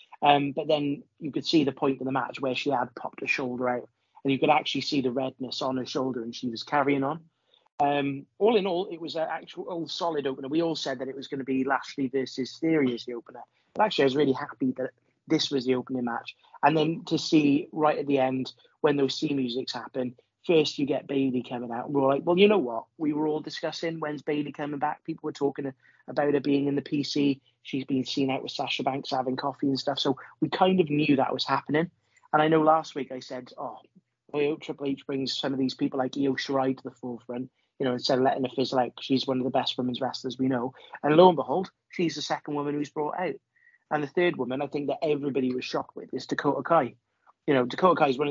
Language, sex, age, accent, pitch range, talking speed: English, male, 30-49, British, 130-150 Hz, 250 wpm